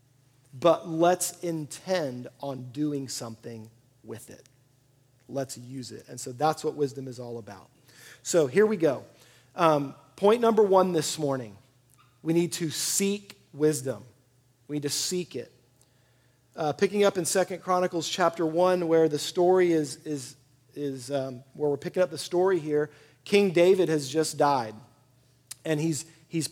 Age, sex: 40-59, male